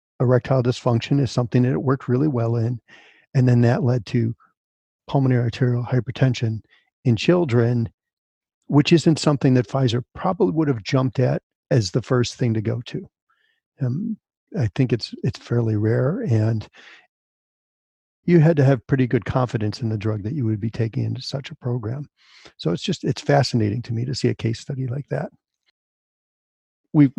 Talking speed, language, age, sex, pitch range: 175 wpm, English, 50-69, male, 120-145 Hz